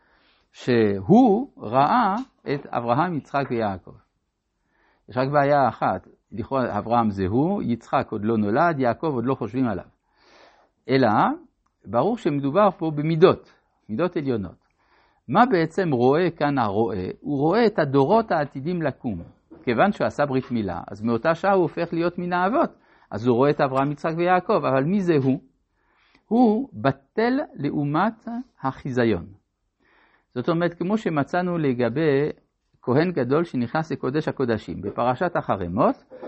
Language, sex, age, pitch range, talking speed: Hebrew, male, 60-79, 120-185 Hz, 130 wpm